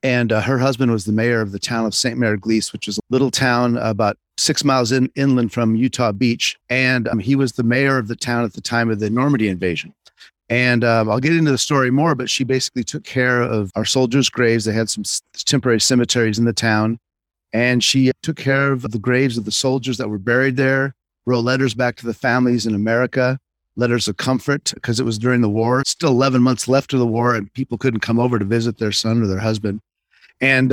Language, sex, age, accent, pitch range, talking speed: English, male, 40-59, American, 110-135 Hz, 235 wpm